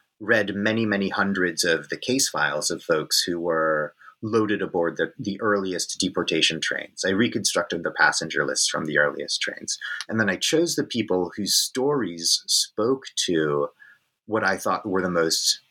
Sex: male